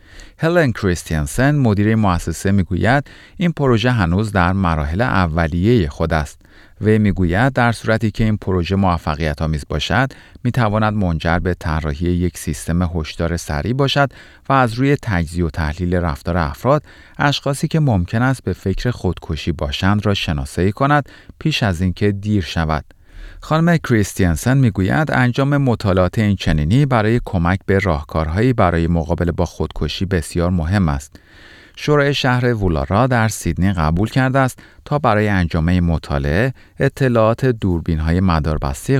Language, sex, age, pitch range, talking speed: Persian, male, 40-59, 85-115 Hz, 135 wpm